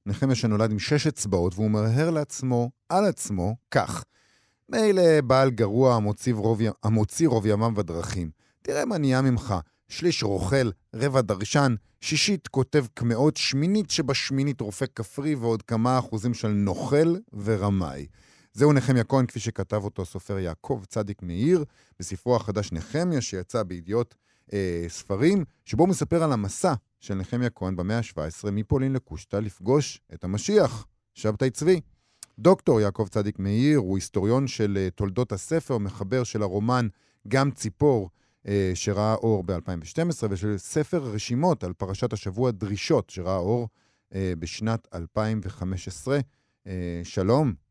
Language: Hebrew